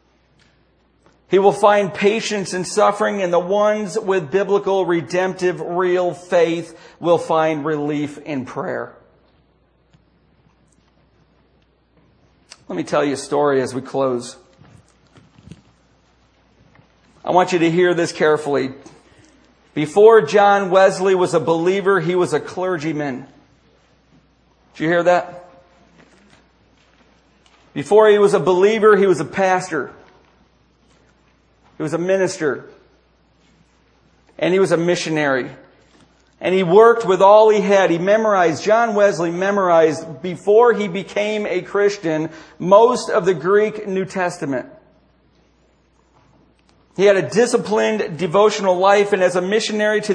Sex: male